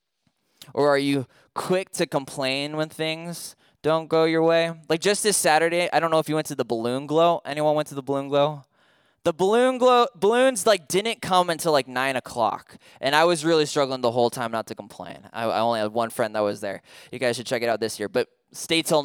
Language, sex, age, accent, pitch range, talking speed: English, male, 20-39, American, 135-205 Hz, 235 wpm